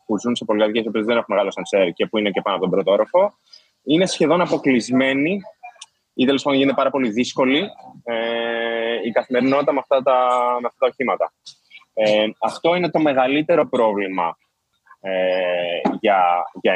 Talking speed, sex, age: 155 wpm, male, 20-39